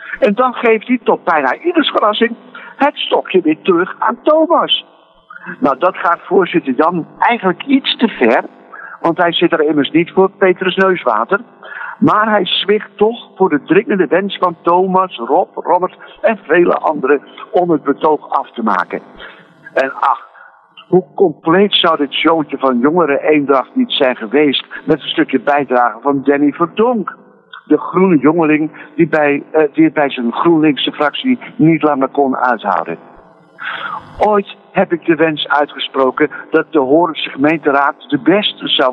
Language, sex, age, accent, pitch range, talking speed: Dutch, male, 60-79, Dutch, 155-230 Hz, 155 wpm